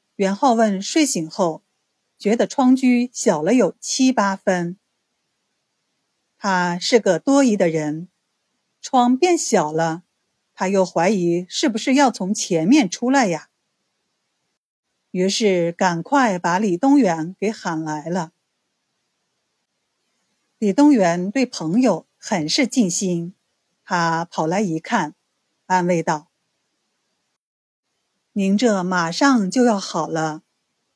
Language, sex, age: Chinese, female, 50-69